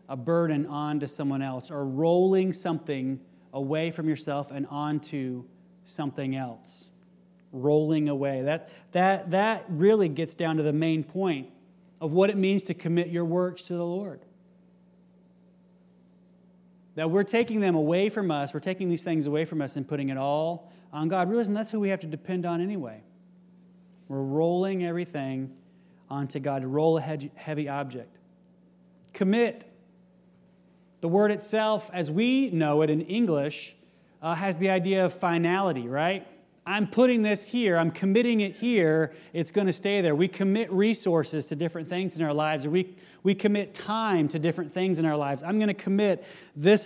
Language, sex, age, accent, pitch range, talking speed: English, male, 30-49, American, 155-185 Hz, 170 wpm